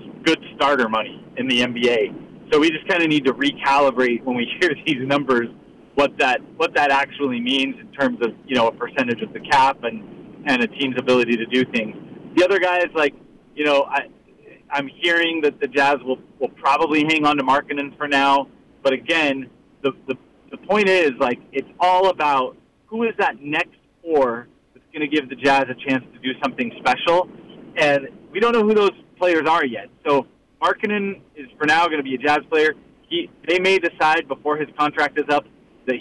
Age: 30-49